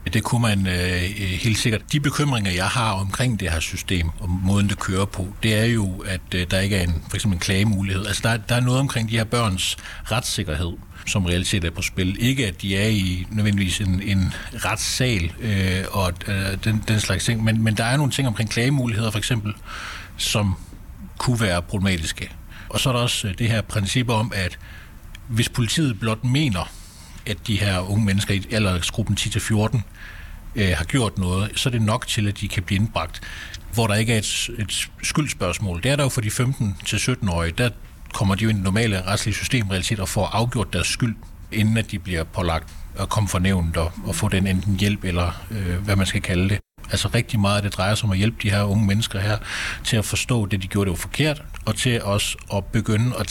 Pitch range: 95-110 Hz